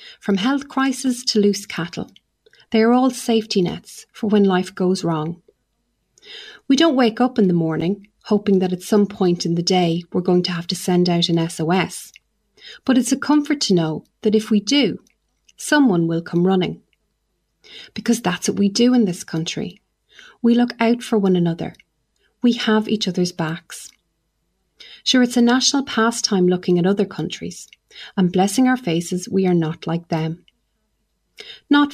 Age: 30-49